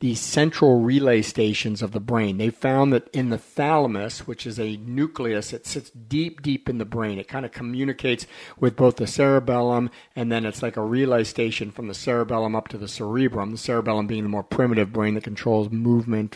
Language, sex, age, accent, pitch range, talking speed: English, male, 50-69, American, 110-135 Hz, 205 wpm